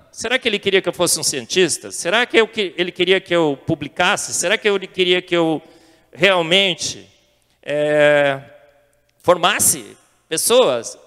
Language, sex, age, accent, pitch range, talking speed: Portuguese, male, 40-59, Brazilian, 145-210 Hz, 135 wpm